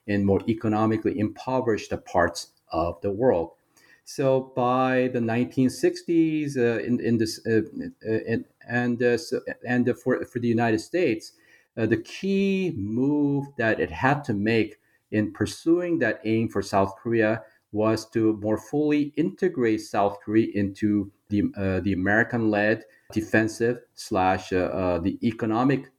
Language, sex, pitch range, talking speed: English, male, 100-125 Hz, 120 wpm